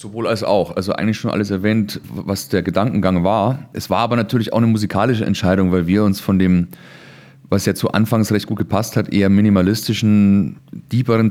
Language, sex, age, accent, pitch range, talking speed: German, male, 30-49, German, 100-120 Hz, 190 wpm